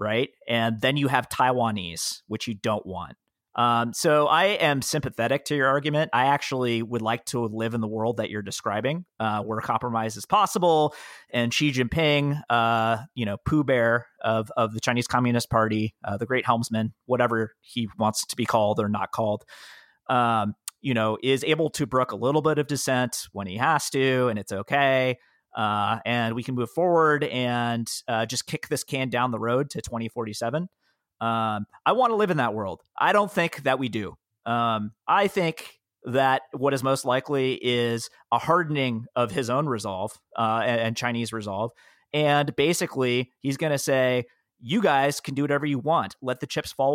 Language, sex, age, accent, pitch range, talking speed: English, male, 30-49, American, 115-145 Hz, 190 wpm